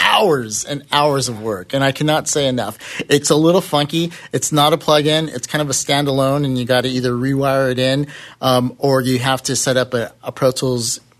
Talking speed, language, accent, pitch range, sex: 225 wpm, English, American, 120-150 Hz, male